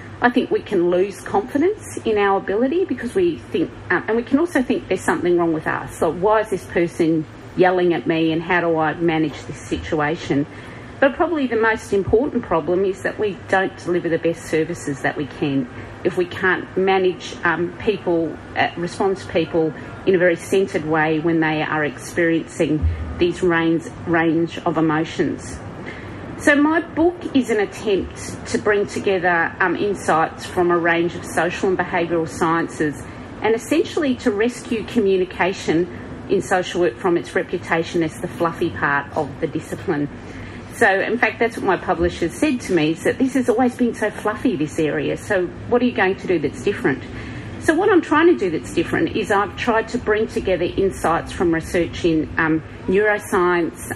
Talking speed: 185 wpm